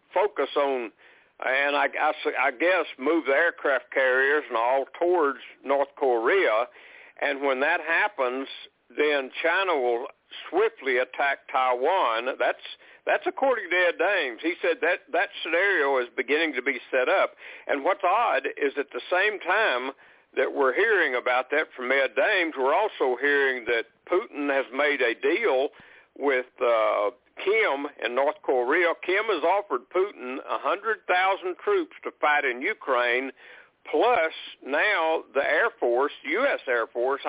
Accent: American